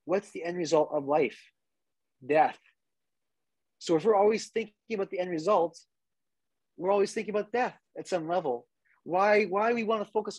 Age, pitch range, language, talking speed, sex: 30-49, 160-225 Hz, English, 175 wpm, male